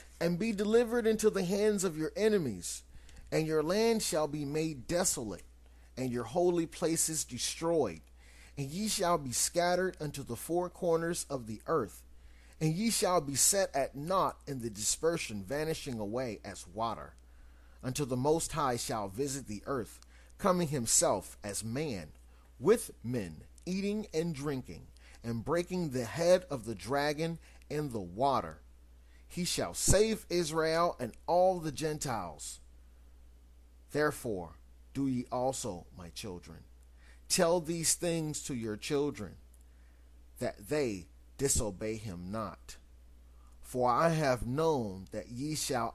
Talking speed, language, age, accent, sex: 140 wpm, English, 30-49, American, male